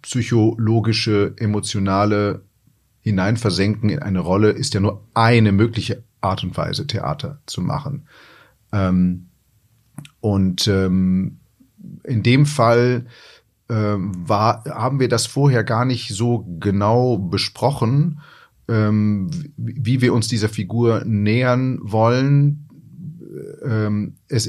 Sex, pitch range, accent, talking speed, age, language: male, 100-125 Hz, German, 95 wpm, 30-49, German